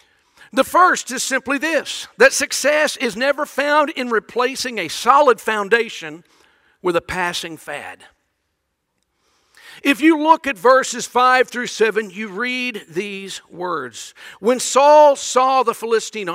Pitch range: 195-280 Hz